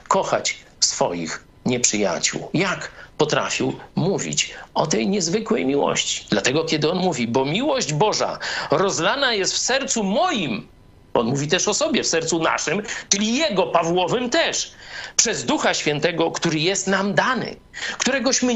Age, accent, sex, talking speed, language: 50-69, native, male, 135 wpm, Polish